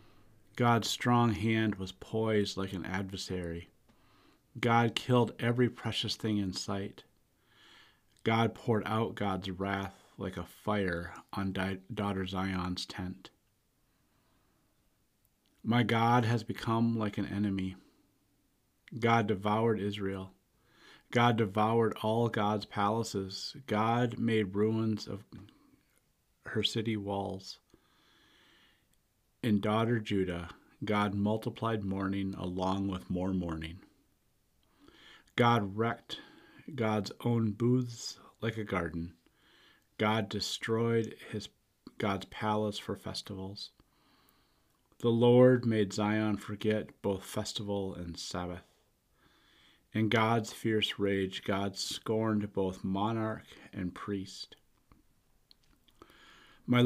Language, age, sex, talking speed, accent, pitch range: English, 40-59, male, 100 wpm, American, 95-115 Hz